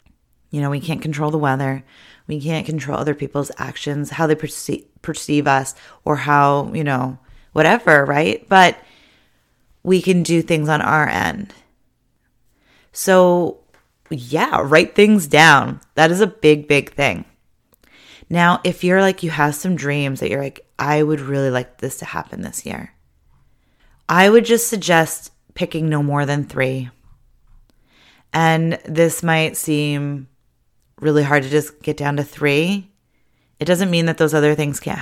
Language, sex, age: English, female, 30-49